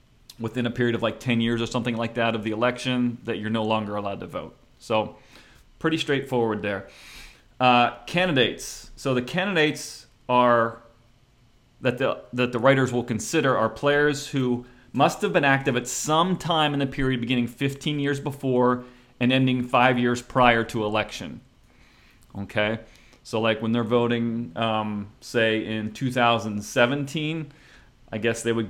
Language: English